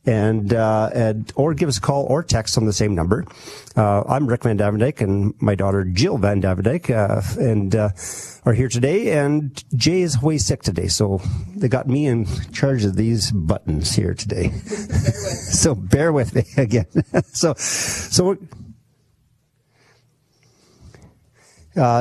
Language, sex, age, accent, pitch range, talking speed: English, male, 50-69, American, 105-135 Hz, 150 wpm